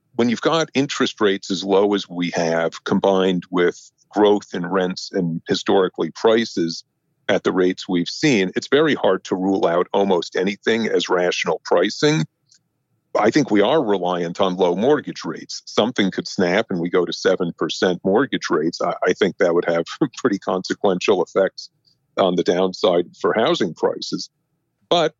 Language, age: English, 50-69